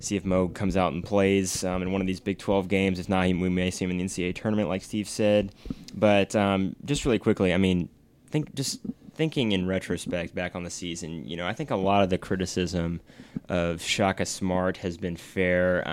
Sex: male